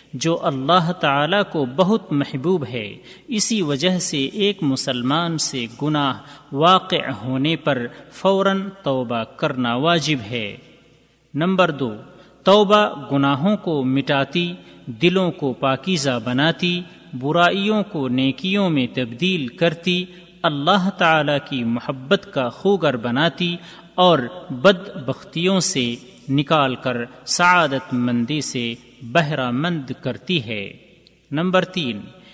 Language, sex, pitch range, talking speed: Urdu, male, 130-180 Hz, 110 wpm